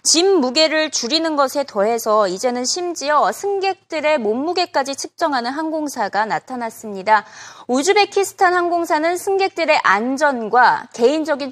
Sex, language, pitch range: female, Korean, 225-345 Hz